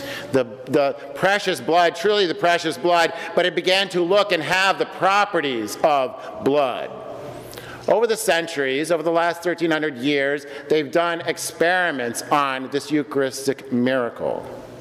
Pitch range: 155-190 Hz